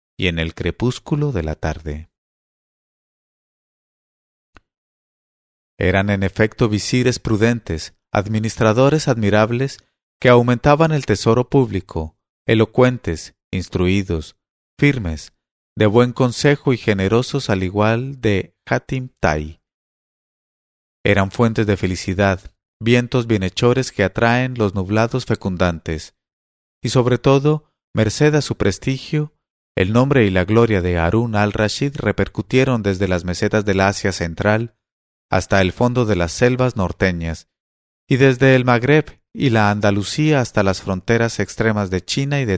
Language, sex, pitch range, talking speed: English, male, 95-125 Hz, 125 wpm